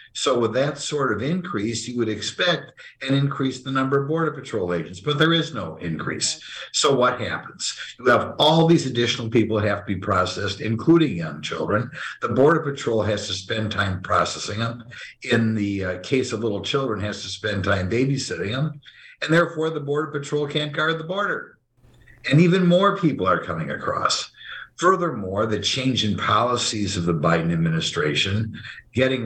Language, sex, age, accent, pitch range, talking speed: English, male, 50-69, American, 100-135 Hz, 175 wpm